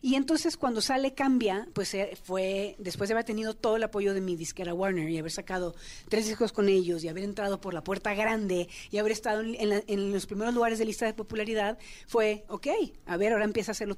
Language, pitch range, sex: Spanish, 185-230 Hz, female